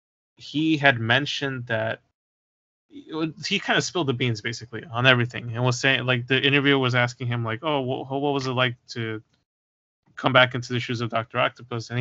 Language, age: English, 20-39